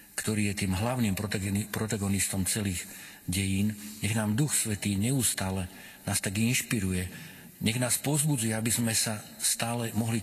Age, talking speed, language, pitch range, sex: 50-69, 135 wpm, Slovak, 95-110 Hz, male